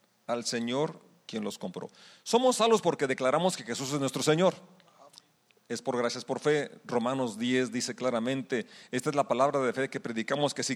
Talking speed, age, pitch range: 185 wpm, 40-59, 125-175 Hz